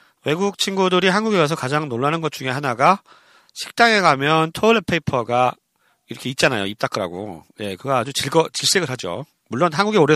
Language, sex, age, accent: Korean, male, 40-59, native